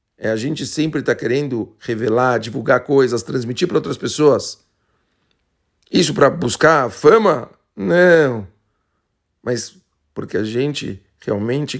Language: Portuguese